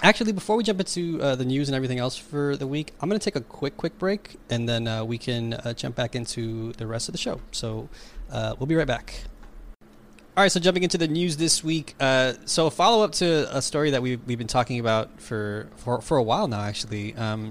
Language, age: English, 20-39